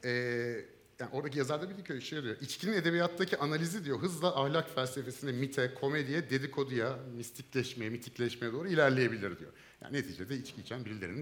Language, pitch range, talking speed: Turkish, 115-170 Hz, 150 wpm